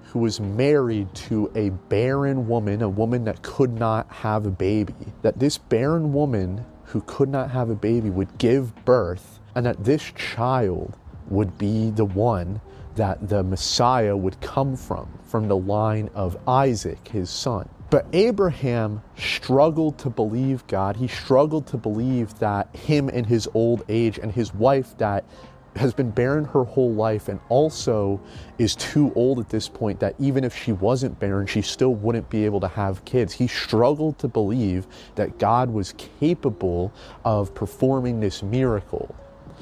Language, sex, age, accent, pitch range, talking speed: English, male, 30-49, American, 100-130 Hz, 165 wpm